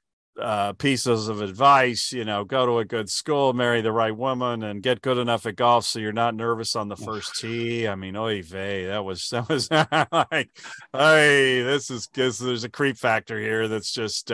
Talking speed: 205 wpm